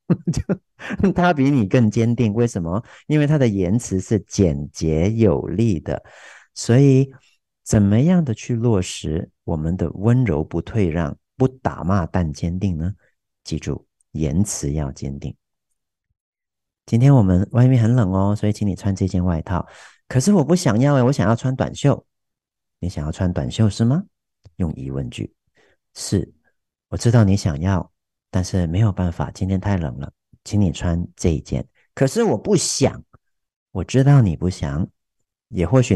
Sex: male